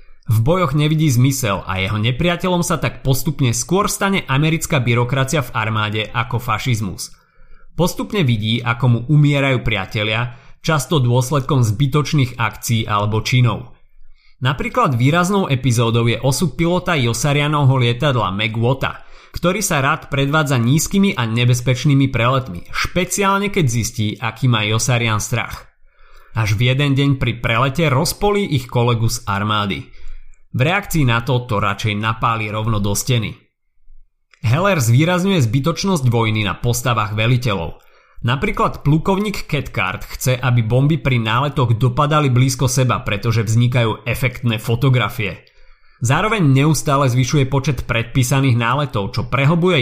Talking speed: 125 wpm